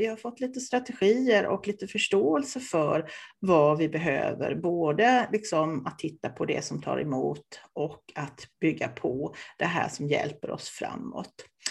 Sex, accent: female, Swedish